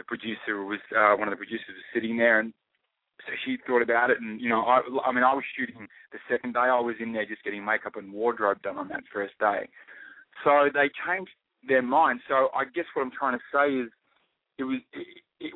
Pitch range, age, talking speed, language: 110-135 Hz, 20-39, 230 wpm, English